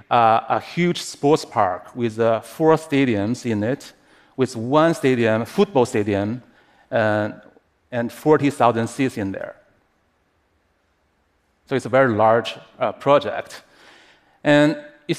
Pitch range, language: 105-135 Hz, Russian